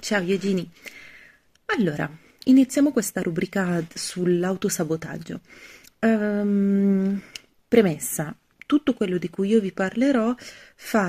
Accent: native